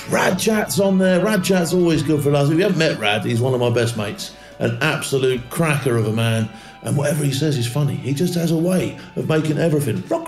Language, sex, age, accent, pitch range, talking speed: English, male, 40-59, British, 125-160 Hz, 245 wpm